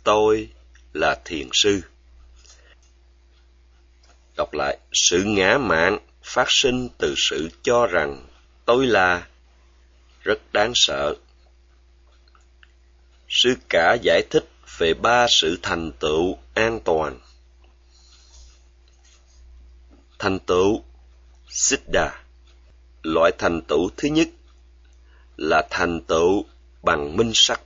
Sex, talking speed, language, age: male, 100 wpm, Vietnamese, 30-49